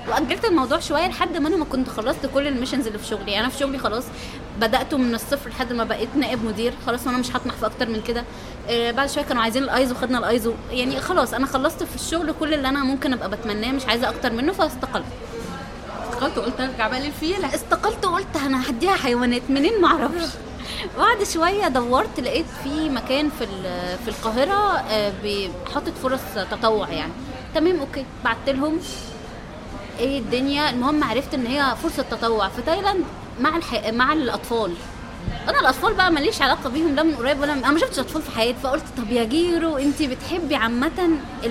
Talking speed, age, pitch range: 185 wpm, 20-39, 235-305 Hz